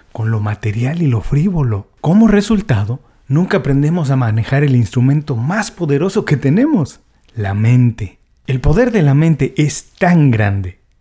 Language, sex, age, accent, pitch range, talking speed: Spanish, male, 40-59, Mexican, 115-170 Hz, 155 wpm